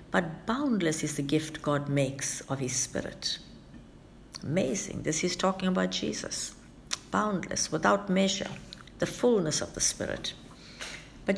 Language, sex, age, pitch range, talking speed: English, female, 60-79, 150-190 Hz, 130 wpm